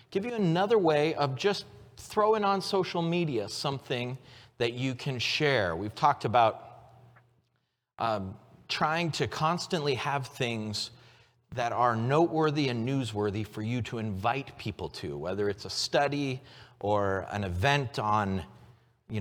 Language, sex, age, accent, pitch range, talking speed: English, male, 30-49, American, 110-140 Hz, 135 wpm